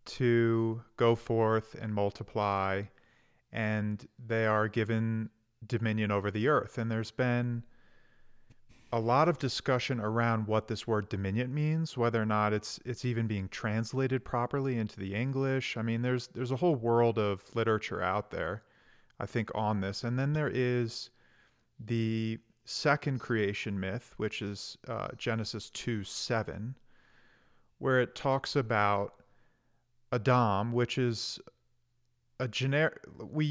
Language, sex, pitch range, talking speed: English, male, 110-125 Hz, 140 wpm